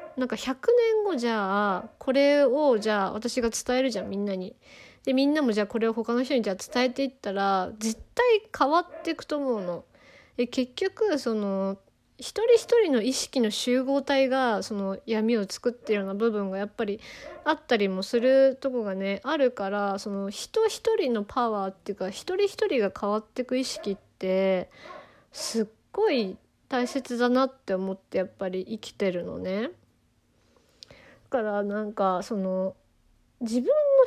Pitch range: 205-285 Hz